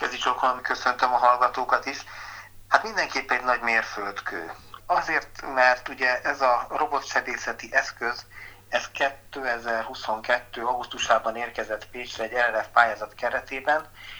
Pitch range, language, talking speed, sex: 110-125 Hz, Hungarian, 105 wpm, male